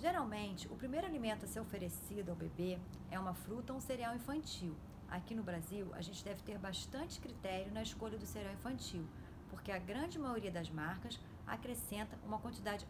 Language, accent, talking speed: Portuguese, Brazilian, 180 wpm